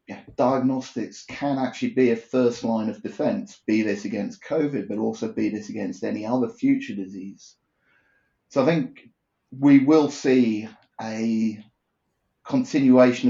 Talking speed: 140 wpm